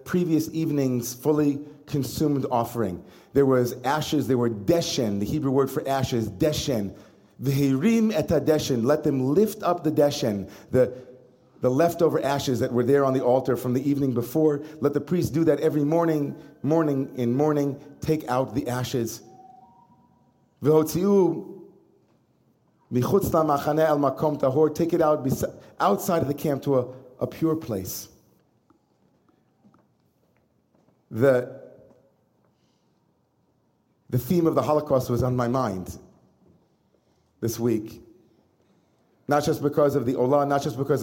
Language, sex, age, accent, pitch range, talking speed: English, male, 40-59, American, 125-150 Hz, 135 wpm